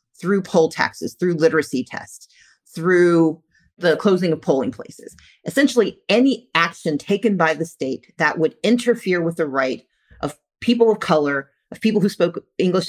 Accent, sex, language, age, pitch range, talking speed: American, female, English, 40-59, 160-210 Hz, 160 wpm